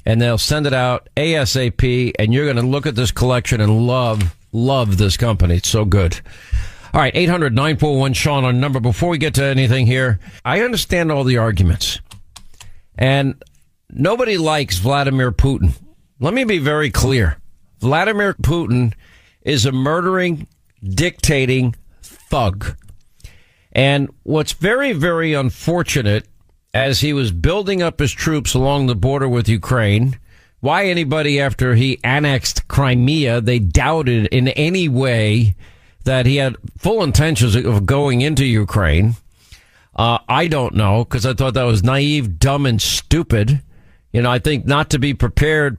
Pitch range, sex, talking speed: 110-140 Hz, male, 145 wpm